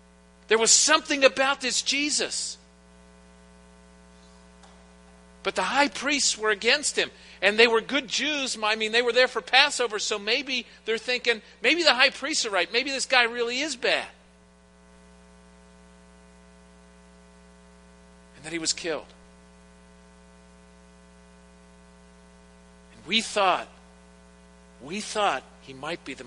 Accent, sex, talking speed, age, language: American, male, 125 wpm, 50-69, English